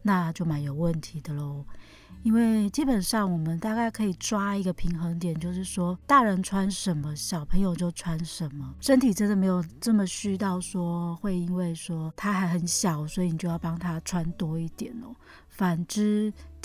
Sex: female